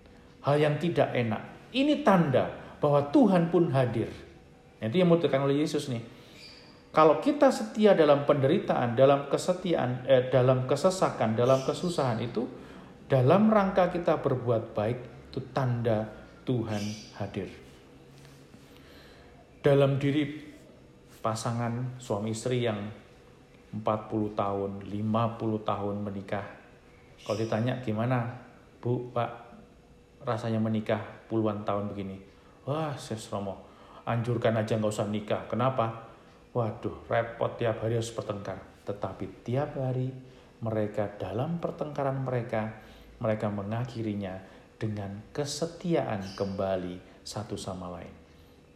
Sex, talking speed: male, 110 wpm